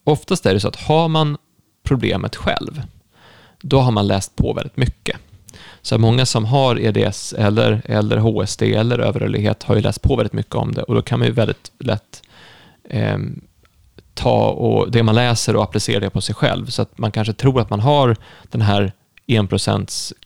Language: Swedish